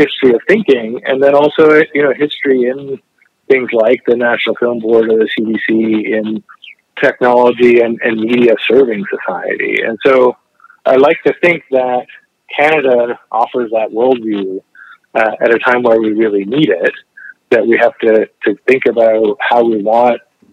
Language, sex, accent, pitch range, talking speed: English, male, American, 110-140 Hz, 165 wpm